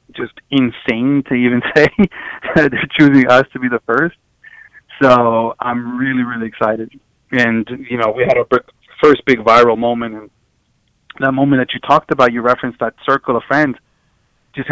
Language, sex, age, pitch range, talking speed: English, male, 20-39, 110-125 Hz, 165 wpm